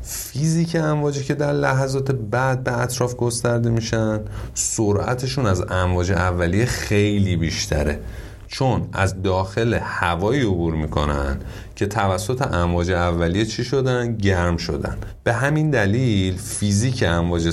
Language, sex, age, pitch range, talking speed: Persian, male, 30-49, 90-115 Hz, 120 wpm